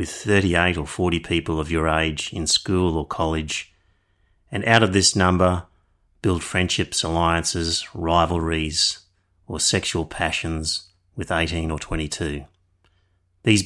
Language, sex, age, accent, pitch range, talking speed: English, male, 30-49, Australian, 85-95 Hz, 125 wpm